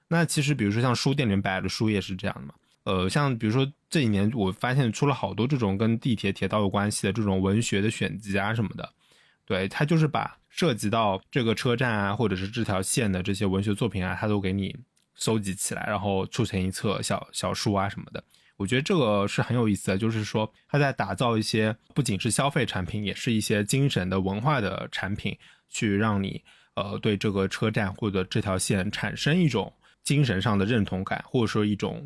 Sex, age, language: male, 20-39, Chinese